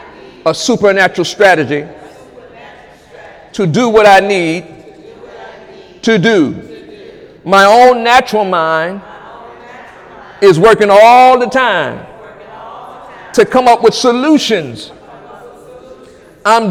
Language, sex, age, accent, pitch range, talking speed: English, male, 50-69, American, 235-320 Hz, 90 wpm